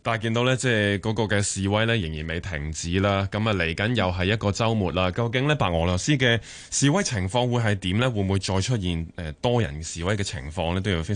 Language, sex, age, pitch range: Chinese, male, 20-39, 90-120 Hz